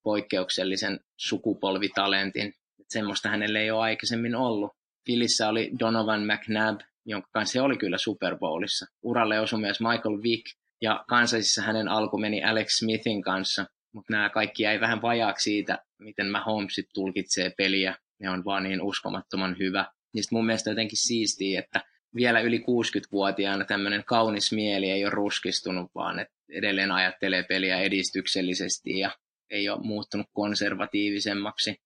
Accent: native